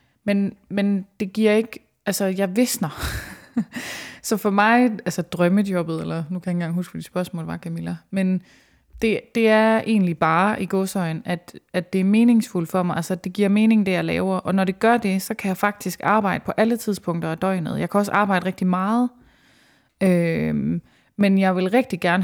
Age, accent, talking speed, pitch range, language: 20-39, native, 195 wpm, 175-210 Hz, Danish